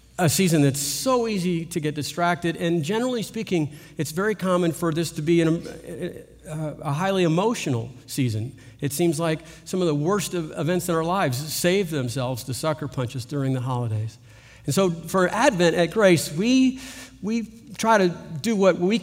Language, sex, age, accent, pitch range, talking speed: English, male, 50-69, American, 135-175 Hz, 180 wpm